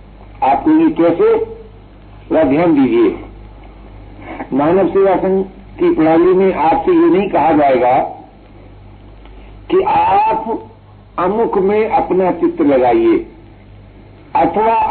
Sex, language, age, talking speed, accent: male, Hindi, 60-79, 95 wpm, native